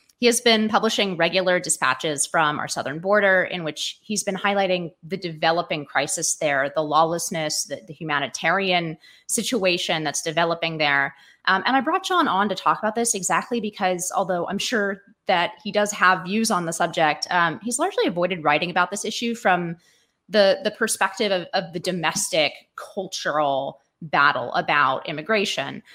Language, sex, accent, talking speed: English, female, American, 165 wpm